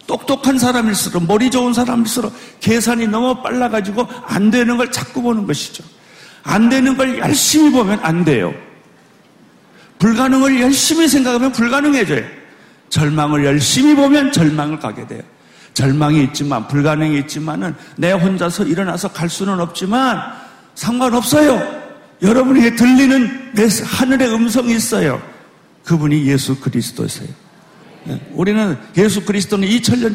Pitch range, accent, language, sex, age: 145-245 Hz, native, Korean, male, 50-69